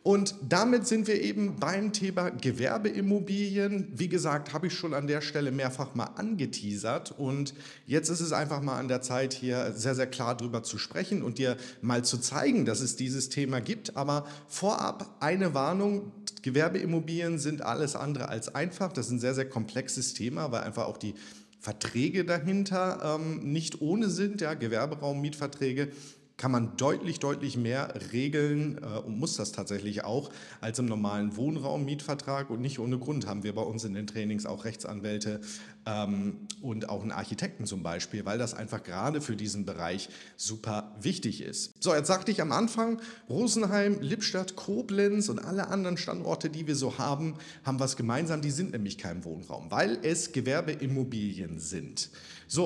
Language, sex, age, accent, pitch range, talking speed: German, male, 40-59, German, 120-175 Hz, 170 wpm